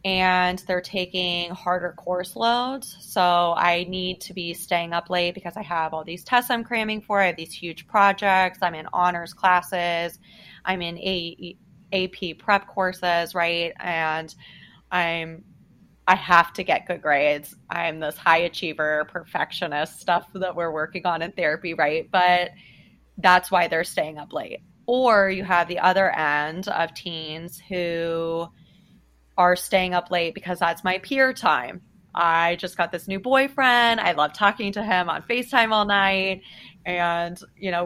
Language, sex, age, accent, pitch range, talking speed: English, female, 20-39, American, 170-195 Hz, 160 wpm